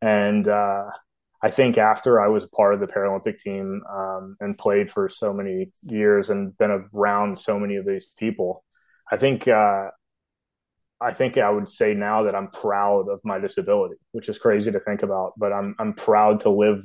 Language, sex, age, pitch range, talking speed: English, male, 20-39, 95-110 Hz, 190 wpm